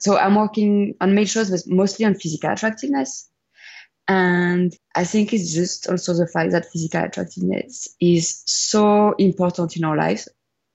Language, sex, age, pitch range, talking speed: English, female, 20-39, 165-195 Hz, 155 wpm